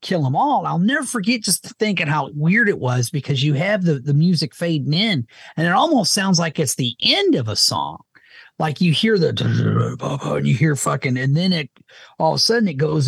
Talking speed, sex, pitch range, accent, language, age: 220 wpm, male, 130-190 Hz, American, English, 30-49